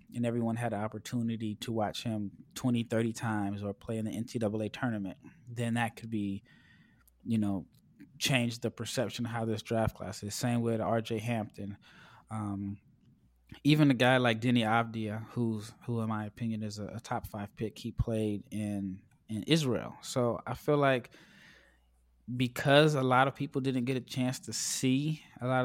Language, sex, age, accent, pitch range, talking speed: English, male, 20-39, American, 110-130 Hz, 175 wpm